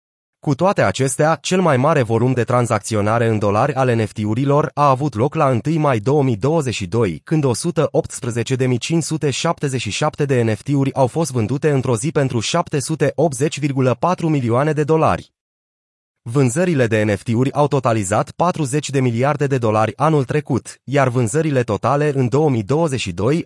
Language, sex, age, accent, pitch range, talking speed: Romanian, male, 30-49, native, 120-155 Hz, 130 wpm